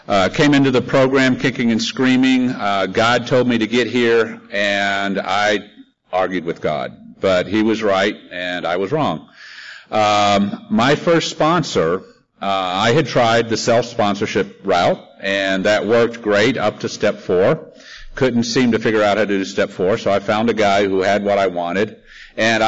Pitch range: 100-140 Hz